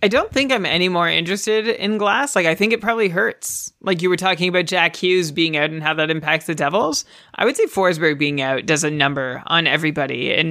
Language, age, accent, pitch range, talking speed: English, 30-49, American, 160-210 Hz, 240 wpm